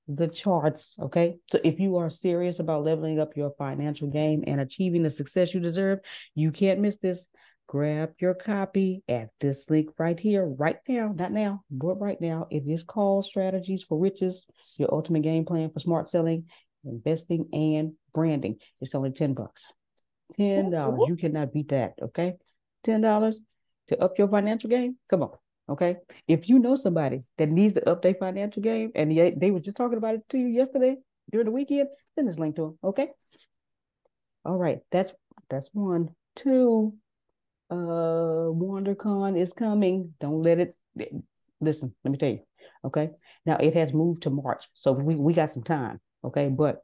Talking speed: 180 wpm